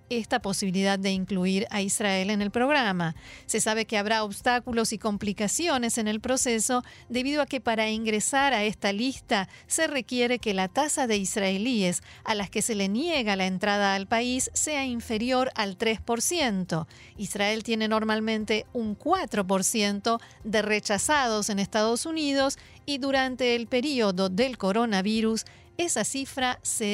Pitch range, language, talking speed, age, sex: 200-250 Hz, Spanish, 150 wpm, 40-59, female